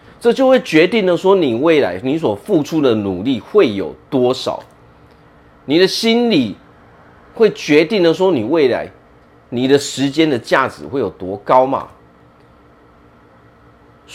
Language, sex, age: Chinese, male, 30-49